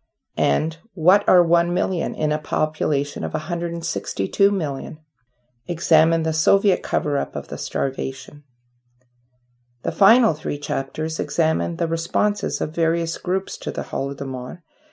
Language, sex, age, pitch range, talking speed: English, female, 50-69, 130-180 Hz, 130 wpm